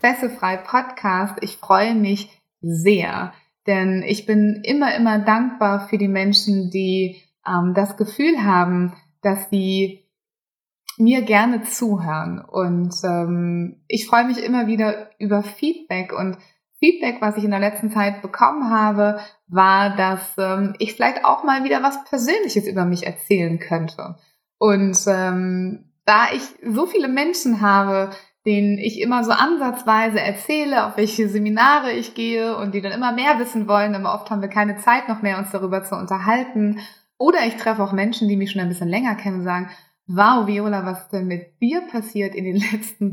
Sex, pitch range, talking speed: female, 190-235 Hz, 170 wpm